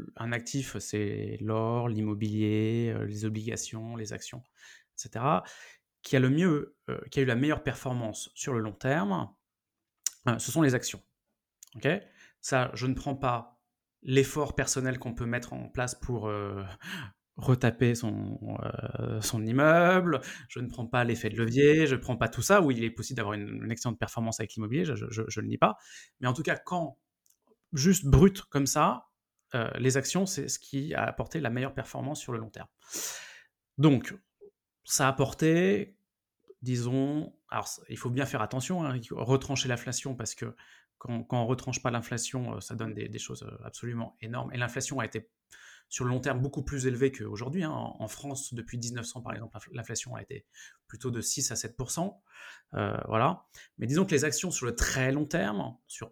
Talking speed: 185 wpm